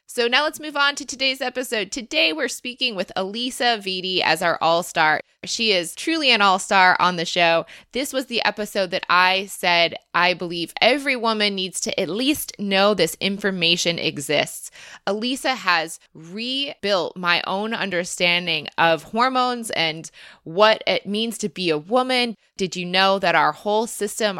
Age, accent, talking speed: 20-39, American, 165 wpm